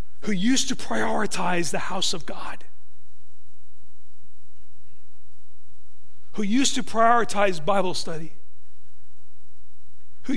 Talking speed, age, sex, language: 85 wpm, 40-59, male, English